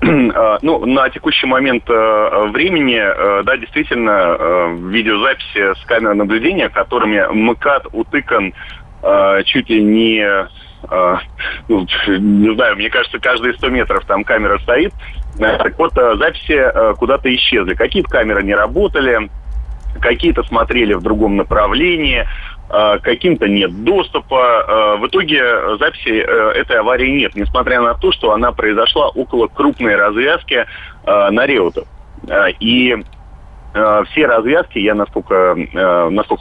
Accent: native